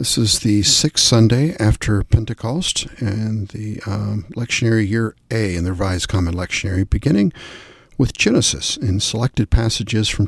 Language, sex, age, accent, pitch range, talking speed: English, male, 60-79, American, 100-120 Hz, 145 wpm